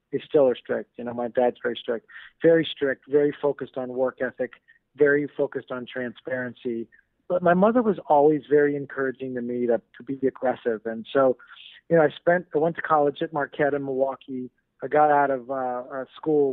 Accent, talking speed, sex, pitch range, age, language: American, 195 wpm, male, 130-145 Hz, 40-59, English